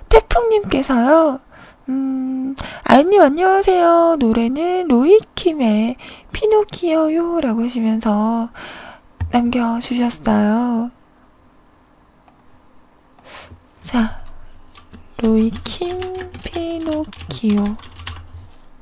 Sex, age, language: female, 20-39, Korean